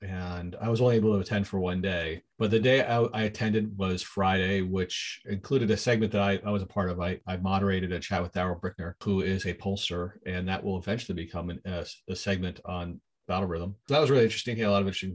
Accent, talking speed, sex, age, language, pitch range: American, 255 wpm, male, 40-59, English, 95-115 Hz